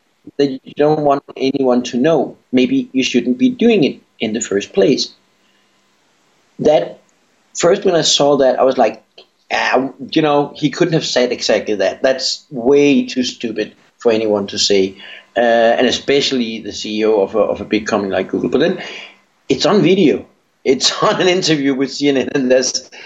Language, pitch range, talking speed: English, 115-140 Hz, 175 wpm